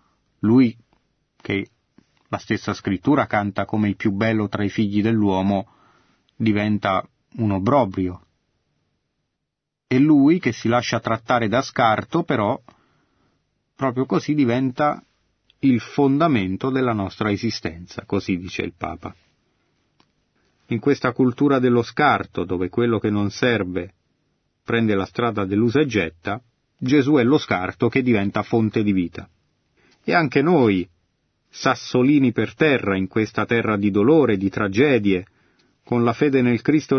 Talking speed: 130 wpm